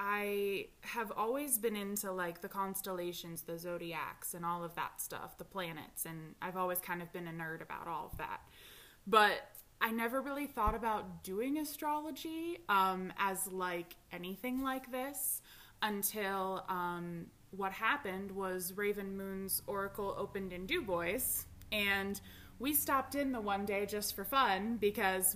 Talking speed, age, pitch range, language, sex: 155 wpm, 20-39, 180-210 Hz, English, female